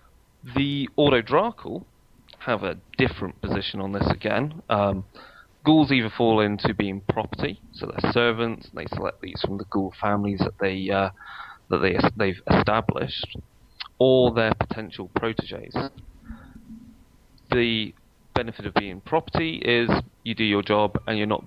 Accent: British